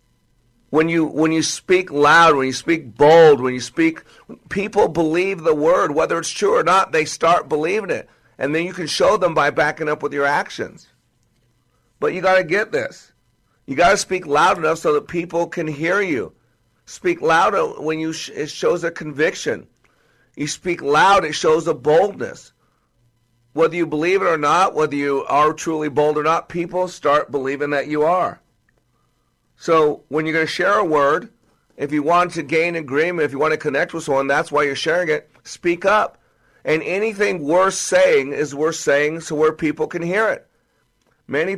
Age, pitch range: 50-69, 145-170 Hz